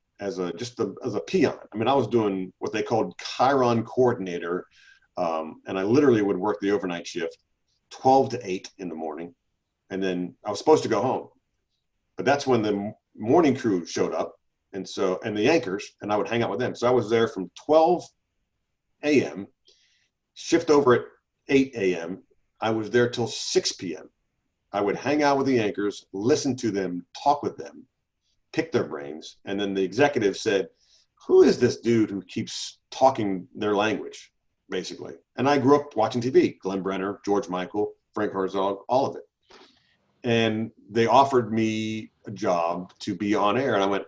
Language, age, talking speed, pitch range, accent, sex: English, 40-59, 185 wpm, 95-130 Hz, American, male